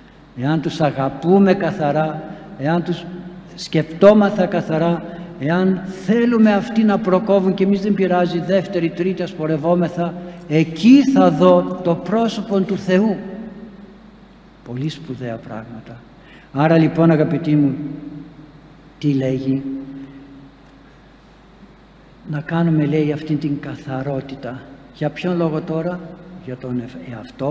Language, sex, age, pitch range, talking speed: Greek, male, 60-79, 145-210 Hz, 105 wpm